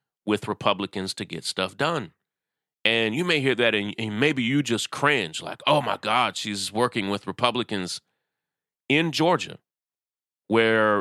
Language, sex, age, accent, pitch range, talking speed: English, male, 30-49, American, 100-125 Hz, 155 wpm